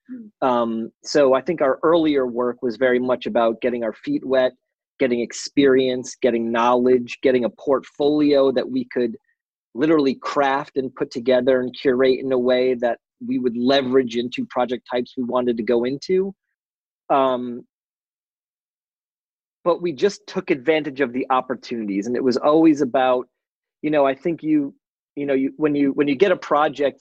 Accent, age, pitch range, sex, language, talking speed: American, 30-49, 125-150 Hz, male, English, 170 wpm